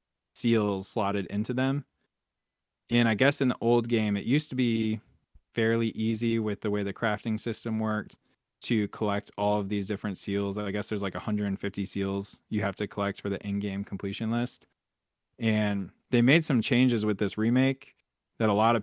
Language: English